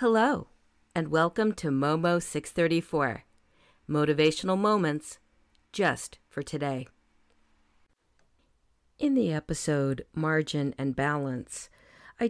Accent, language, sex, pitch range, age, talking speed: American, English, female, 140-185 Hz, 50-69, 90 wpm